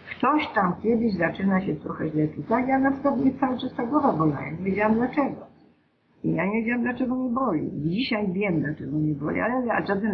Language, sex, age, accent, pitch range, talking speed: Polish, female, 50-69, native, 175-255 Hz, 200 wpm